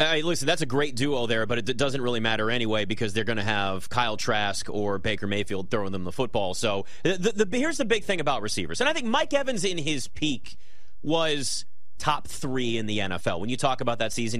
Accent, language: American, English